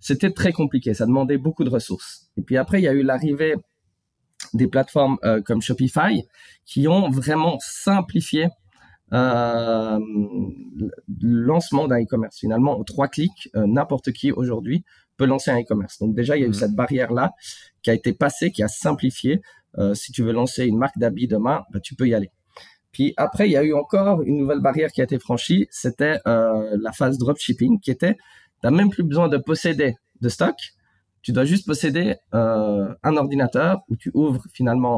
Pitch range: 115-150 Hz